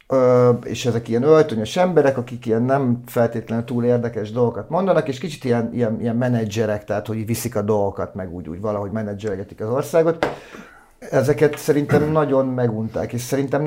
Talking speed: 165 wpm